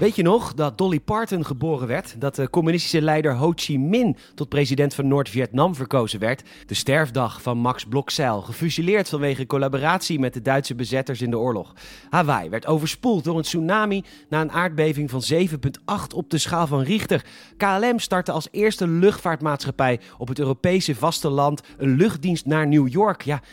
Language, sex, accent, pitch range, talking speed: Dutch, male, Dutch, 135-185 Hz, 170 wpm